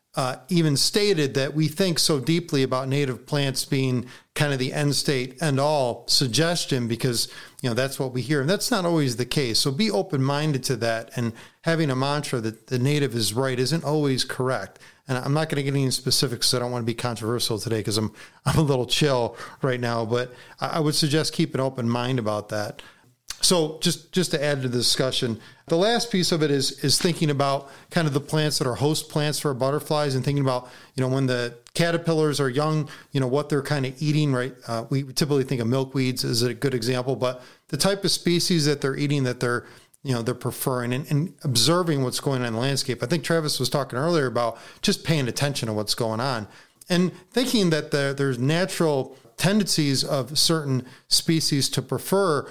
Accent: American